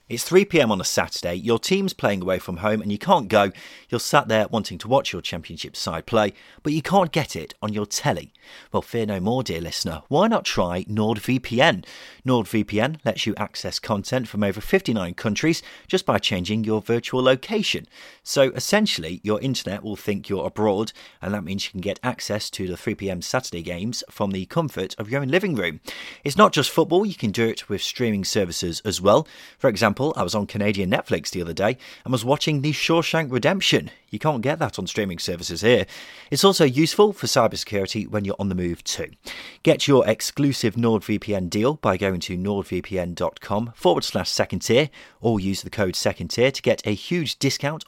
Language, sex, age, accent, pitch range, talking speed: English, male, 30-49, British, 100-135 Hz, 200 wpm